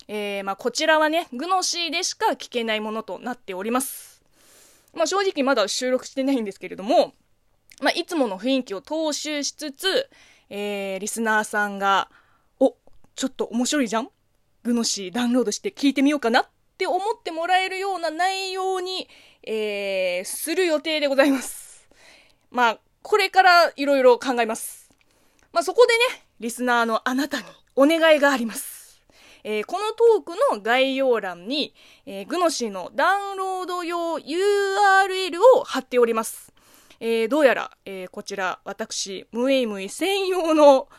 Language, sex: Japanese, female